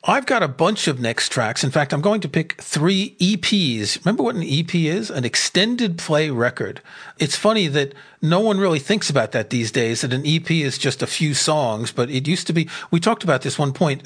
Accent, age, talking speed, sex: American, 40-59, 230 wpm, male